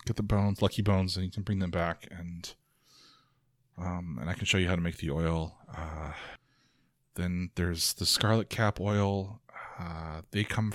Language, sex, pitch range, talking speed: English, male, 85-105 Hz, 185 wpm